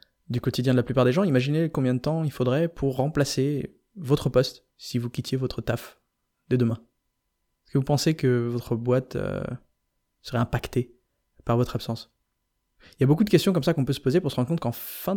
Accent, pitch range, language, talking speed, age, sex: French, 120-140 Hz, French, 215 wpm, 20-39, male